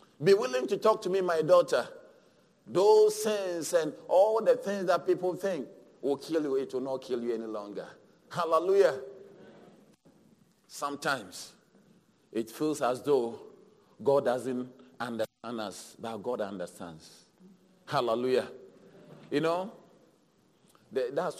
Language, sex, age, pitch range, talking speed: English, male, 40-59, 125-160 Hz, 125 wpm